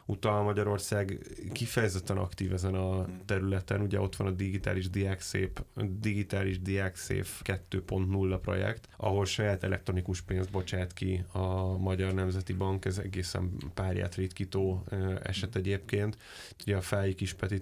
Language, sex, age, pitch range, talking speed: Hungarian, male, 20-39, 95-105 Hz, 135 wpm